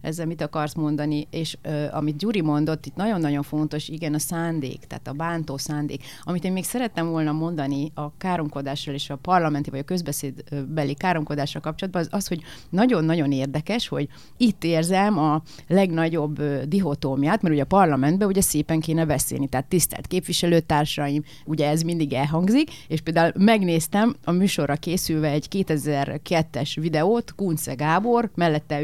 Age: 30-49